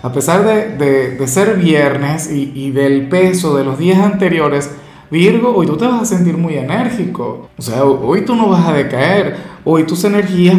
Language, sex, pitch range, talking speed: Spanish, male, 140-170 Hz, 200 wpm